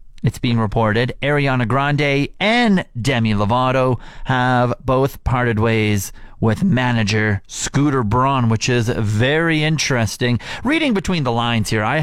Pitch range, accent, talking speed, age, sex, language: 110-155 Hz, American, 130 wpm, 30-49, male, English